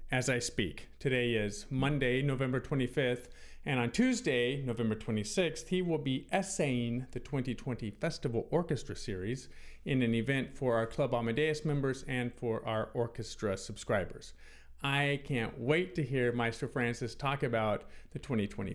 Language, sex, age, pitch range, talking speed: English, male, 40-59, 115-155 Hz, 145 wpm